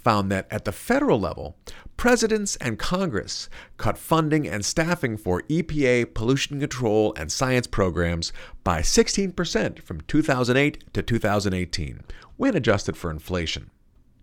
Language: English